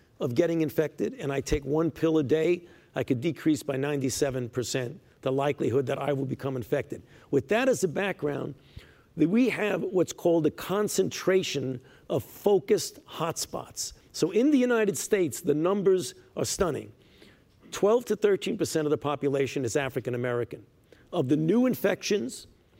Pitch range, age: 135-185 Hz, 50-69